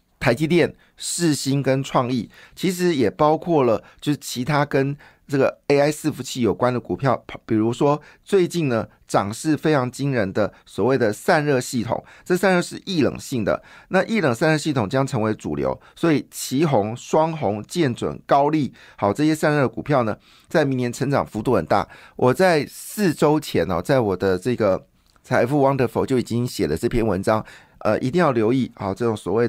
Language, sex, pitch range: Chinese, male, 110-150 Hz